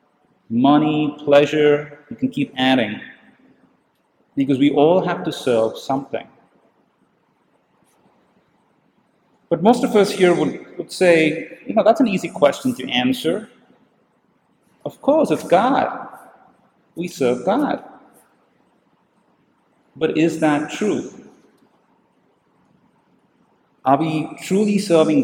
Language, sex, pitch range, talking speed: English, male, 135-175 Hz, 105 wpm